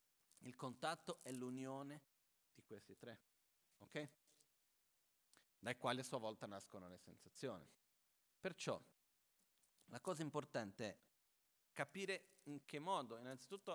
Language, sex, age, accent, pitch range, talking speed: Italian, male, 40-59, native, 115-150 Hz, 115 wpm